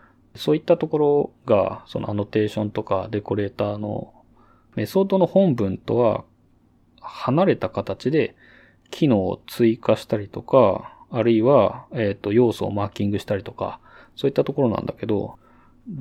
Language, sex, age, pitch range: Japanese, male, 20-39, 105-135 Hz